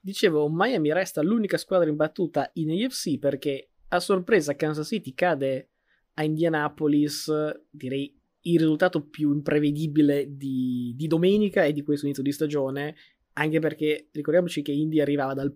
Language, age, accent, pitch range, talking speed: Italian, 20-39, native, 140-160 Hz, 145 wpm